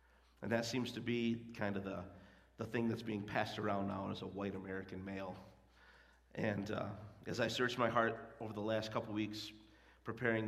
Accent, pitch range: American, 100-120 Hz